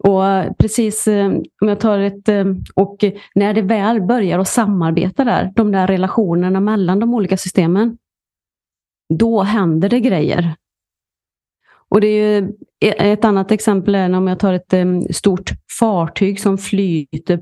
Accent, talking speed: native, 140 wpm